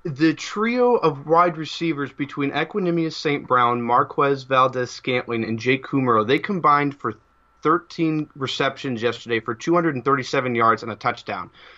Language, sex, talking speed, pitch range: English, male, 130 wpm, 130-165 Hz